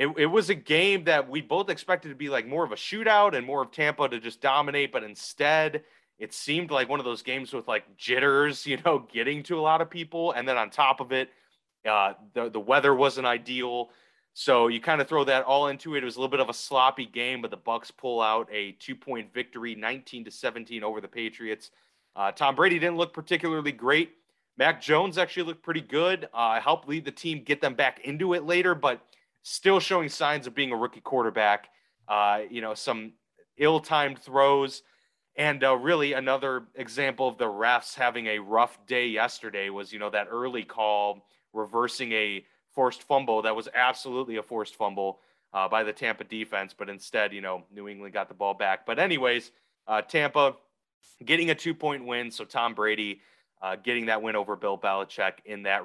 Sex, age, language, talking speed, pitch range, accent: male, 30-49, English, 205 wpm, 110-150 Hz, American